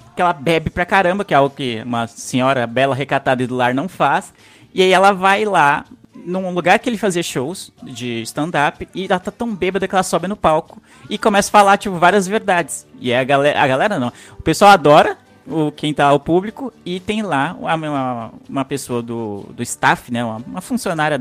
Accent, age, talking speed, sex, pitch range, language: Brazilian, 20-39, 205 wpm, male, 135-185 Hz, Portuguese